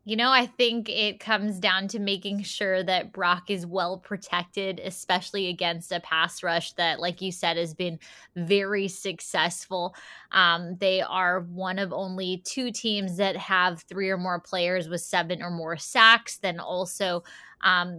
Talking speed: 165 wpm